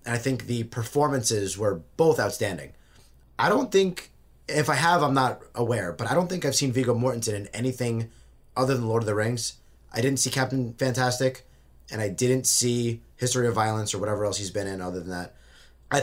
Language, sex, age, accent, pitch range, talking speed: English, male, 20-39, American, 110-135 Hz, 205 wpm